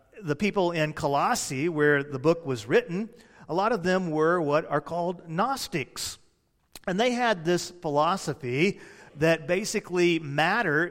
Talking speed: 145 wpm